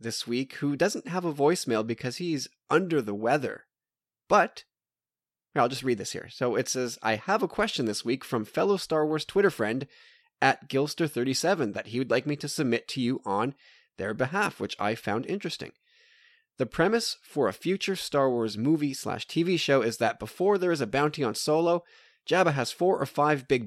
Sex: male